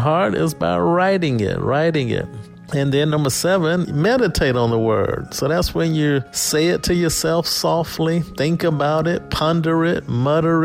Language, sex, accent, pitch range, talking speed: English, male, American, 125-155 Hz, 170 wpm